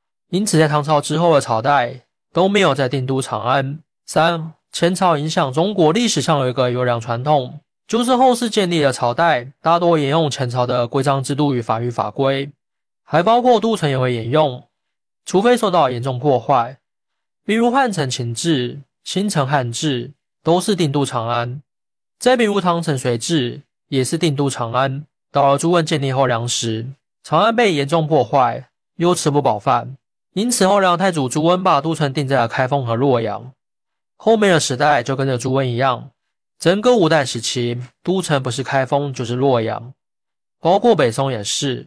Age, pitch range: 20-39, 130-170 Hz